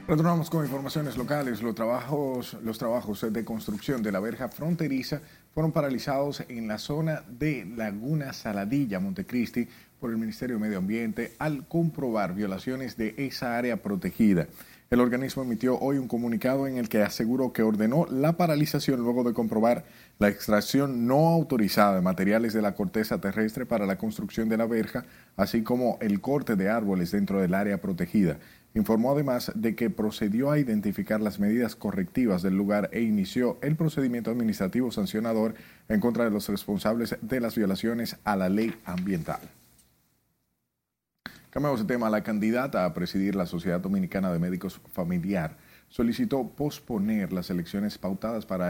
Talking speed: 155 wpm